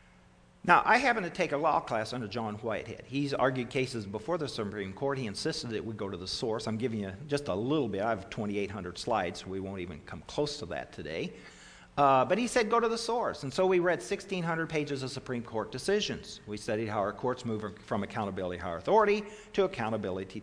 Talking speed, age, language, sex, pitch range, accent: 225 wpm, 50-69, English, male, 105-145 Hz, American